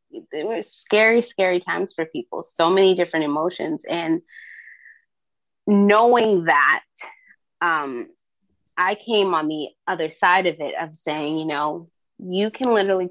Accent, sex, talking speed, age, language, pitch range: American, female, 135 wpm, 20-39, English, 165-220 Hz